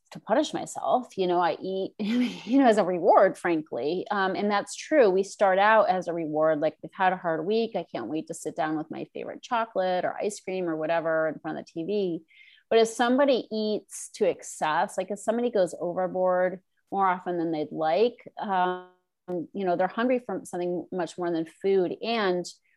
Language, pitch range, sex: English, 175-210 Hz, female